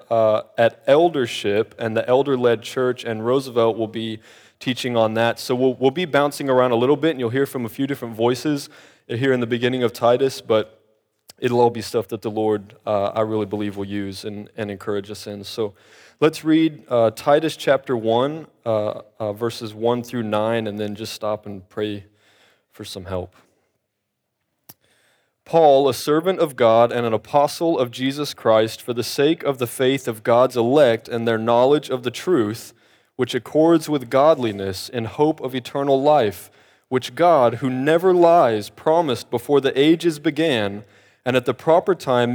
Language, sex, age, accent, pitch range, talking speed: English, male, 20-39, American, 110-140 Hz, 180 wpm